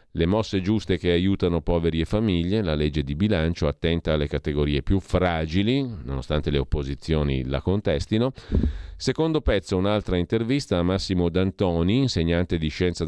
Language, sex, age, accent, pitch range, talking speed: Italian, male, 40-59, native, 80-110 Hz, 145 wpm